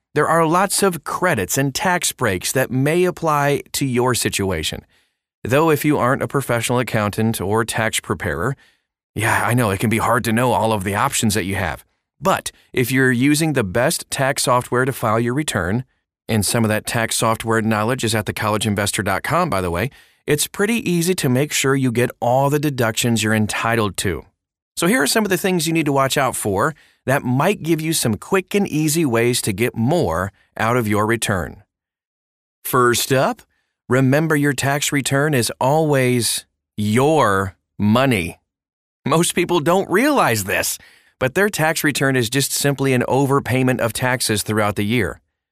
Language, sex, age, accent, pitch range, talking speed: English, male, 30-49, American, 110-145 Hz, 180 wpm